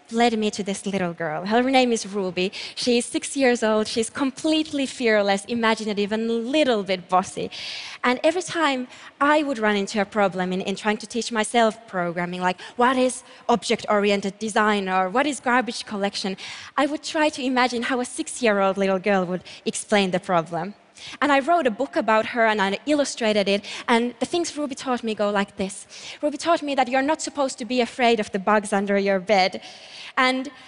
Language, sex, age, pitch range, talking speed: Russian, female, 20-39, 205-265 Hz, 195 wpm